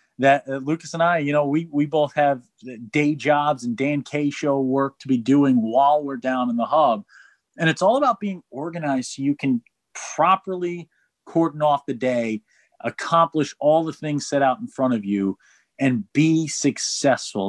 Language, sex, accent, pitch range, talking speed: English, male, American, 125-165 Hz, 185 wpm